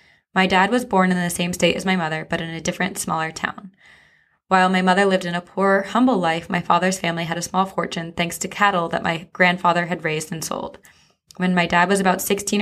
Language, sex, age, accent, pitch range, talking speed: English, female, 20-39, American, 170-195 Hz, 235 wpm